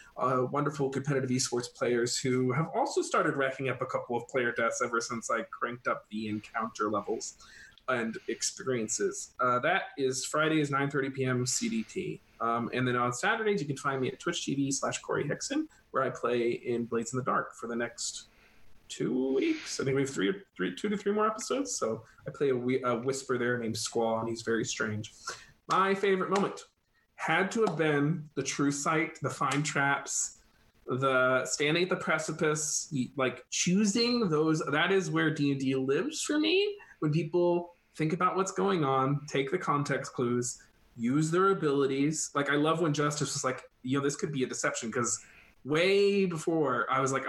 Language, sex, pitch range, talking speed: English, male, 130-175 Hz, 190 wpm